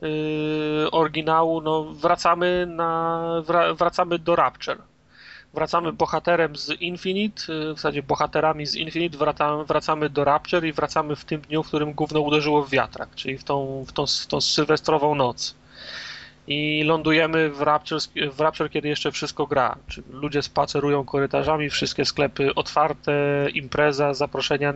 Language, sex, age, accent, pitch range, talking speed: Polish, male, 30-49, native, 140-160 Hz, 145 wpm